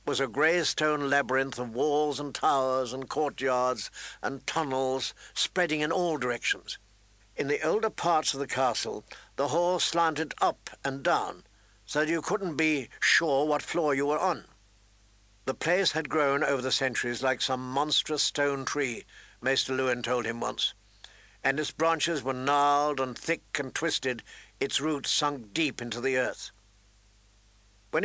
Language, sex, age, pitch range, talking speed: English, male, 60-79, 125-155 Hz, 160 wpm